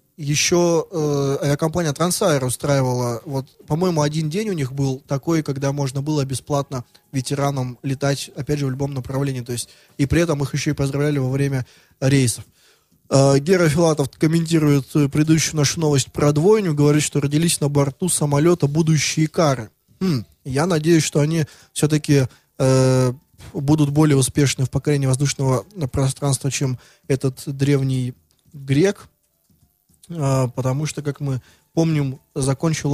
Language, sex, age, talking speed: Russian, male, 20-39, 135 wpm